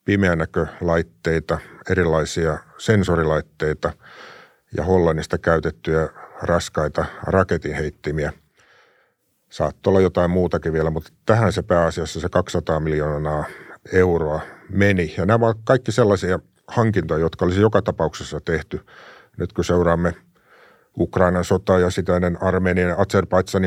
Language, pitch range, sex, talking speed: Finnish, 80-95 Hz, male, 105 wpm